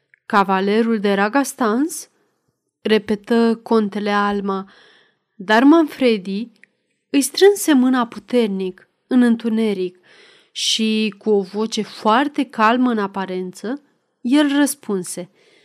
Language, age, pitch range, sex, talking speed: Romanian, 30-49, 205-260 Hz, female, 90 wpm